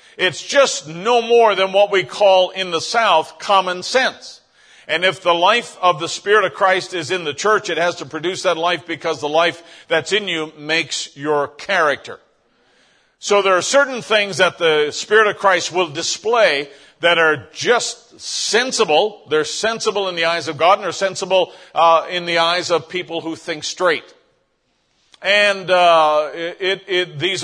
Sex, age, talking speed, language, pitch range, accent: male, 50-69, 180 wpm, English, 160-200 Hz, American